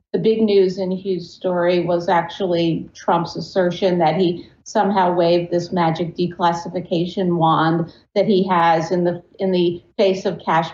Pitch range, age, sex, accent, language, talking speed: 175-200 Hz, 50-69, female, American, English, 155 wpm